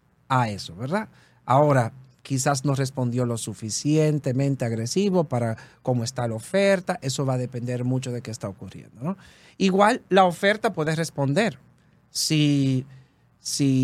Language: Spanish